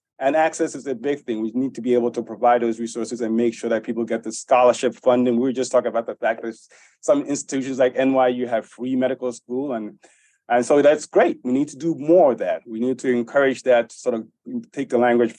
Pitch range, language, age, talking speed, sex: 120-145 Hz, English, 30-49, 245 wpm, male